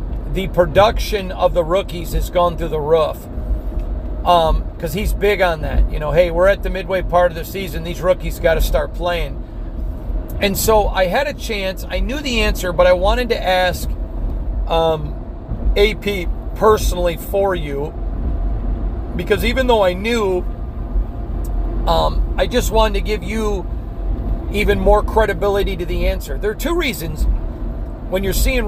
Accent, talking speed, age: American, 165 wpm, 40-59